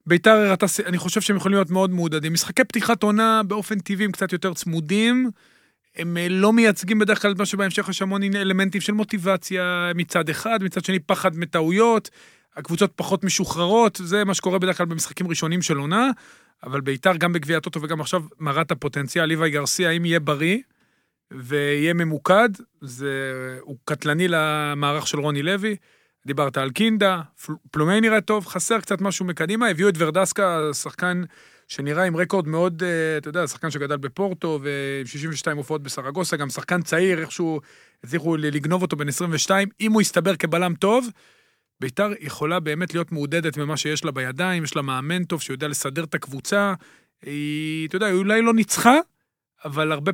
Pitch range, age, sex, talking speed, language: 155-195 Hz, 40-59, male, 165 wpm, Hebrew